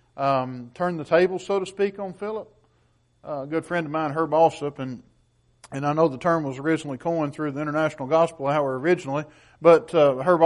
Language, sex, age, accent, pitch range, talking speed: English, male, 50-69, American, 145-200 Hz, 200 wpm